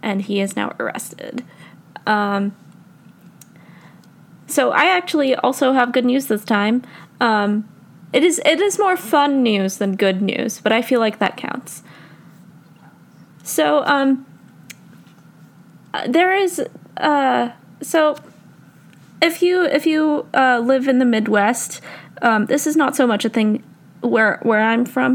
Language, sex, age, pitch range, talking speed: English, female, 20-39, 200-275 Hz, 140 wpm